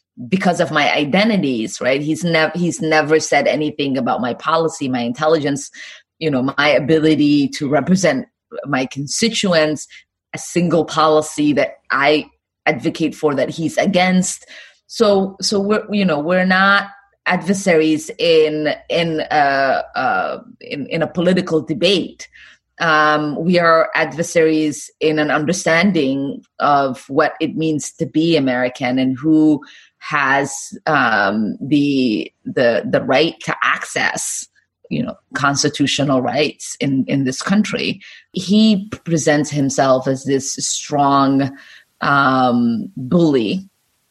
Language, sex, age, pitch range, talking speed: English, female, 20-39, 140-175 Hz, 125 wpm